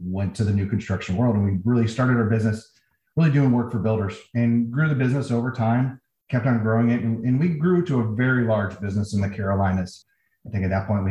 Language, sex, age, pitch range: English, male, 30-49, 105-125 Hz